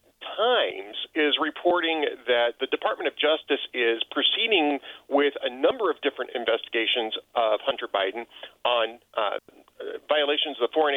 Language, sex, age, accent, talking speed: English, male, 40-59, American, 135 wpm